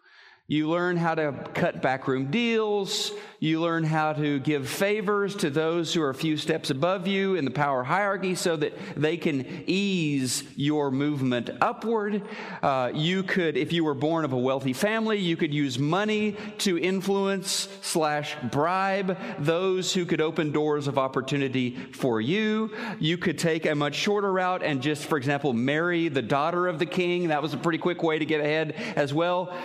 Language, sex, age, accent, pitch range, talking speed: English, male, 40-59, American, 155-195 Hz, 180 wpm